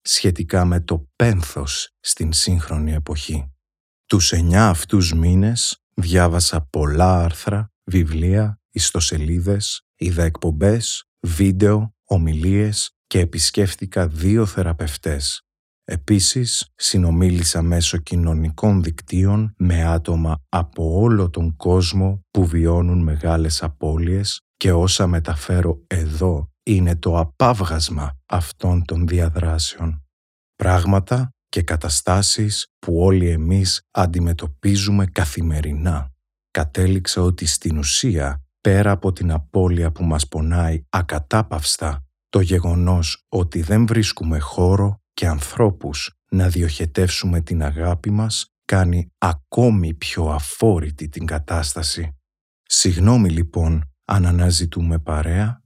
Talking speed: 100 wpm